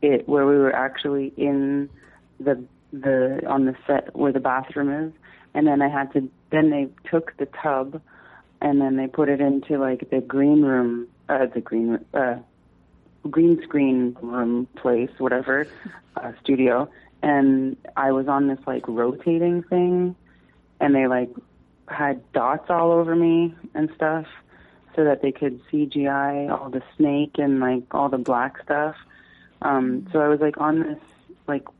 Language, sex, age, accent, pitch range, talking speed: English, female, 30-49, American, 130-160 Hz, 160 wpm